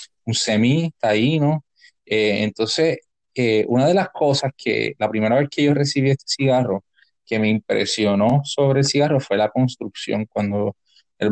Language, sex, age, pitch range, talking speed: English, male, 20-39, 110-135 Hz, 170 wpm